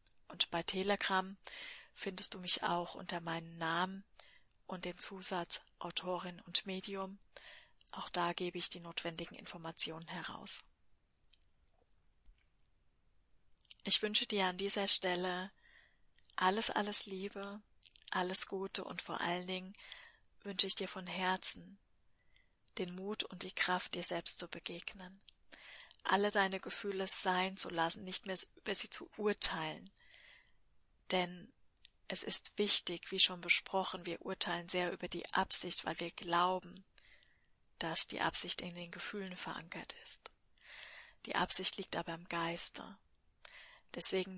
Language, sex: German, female